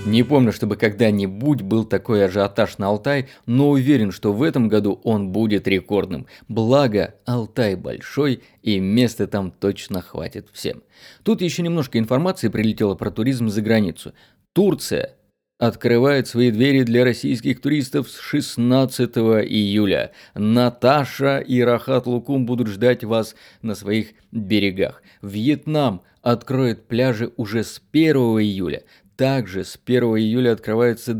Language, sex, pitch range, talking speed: Russian, male, 105-125 Hz, 130 wpm